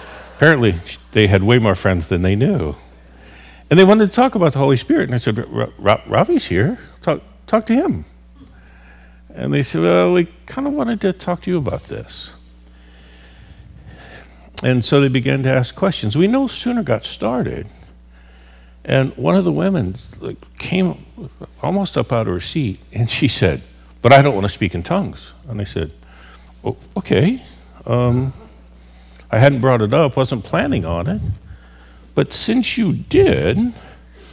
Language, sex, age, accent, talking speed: English, male, 50-69, American, 165 wpm